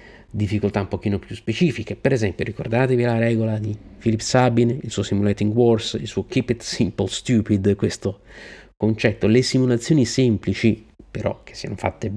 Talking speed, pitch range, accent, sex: 160 wpm, 105-125 Hz, native, male